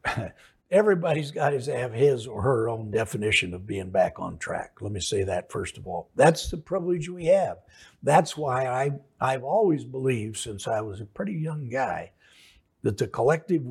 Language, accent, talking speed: English, American, 180 wpm